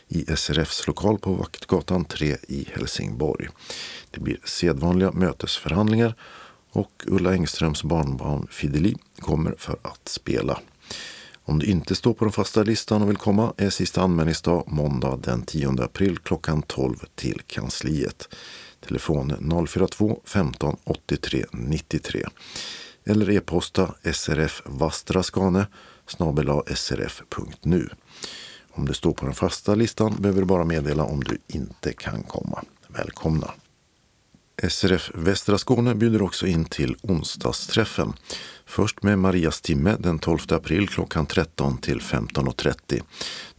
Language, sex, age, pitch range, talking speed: Swedish, male, 50-69, 80-105 Hz, 120 wpm